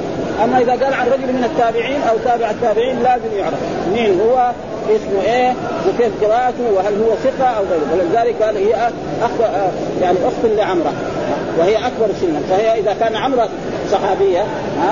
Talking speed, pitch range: 155 wpm, 190-250 Hz